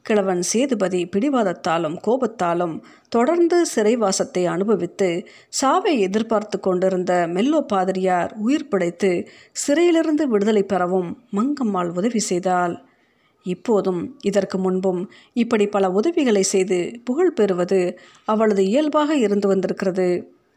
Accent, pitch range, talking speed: native, 185-240 Hz, 95 wpm